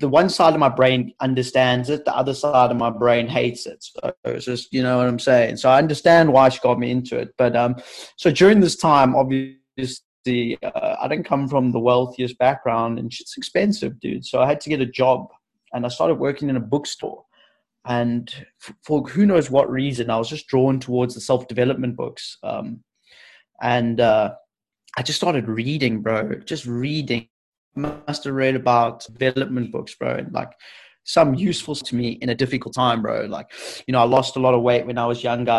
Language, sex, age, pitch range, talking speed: English, male, 20-39, 125-150 Hz, 205 wpm